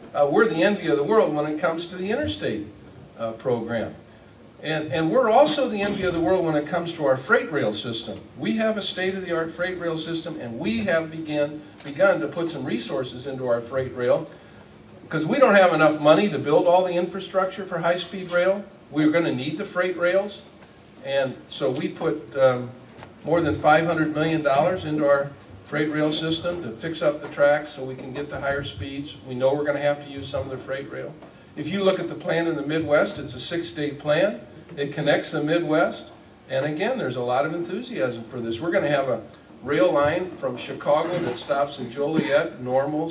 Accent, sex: American, male